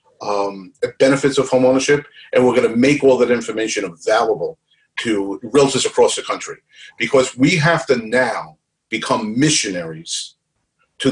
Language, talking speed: English, 150 wpm